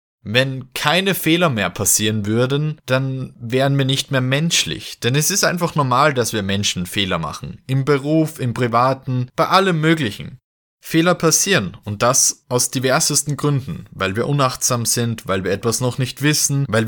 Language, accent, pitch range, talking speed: German, German, 120-155 Hz, 165 wpm